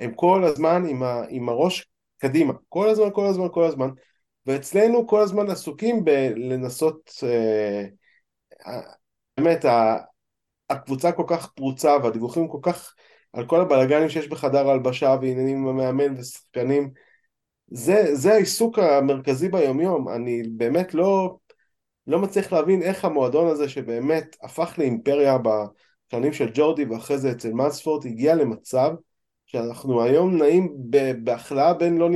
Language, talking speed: Hebrew, 130 wpm